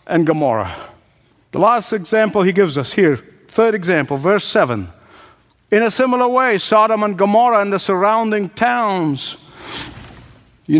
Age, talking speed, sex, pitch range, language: 50-69, 140 wpm, male, 165-230 Hz, English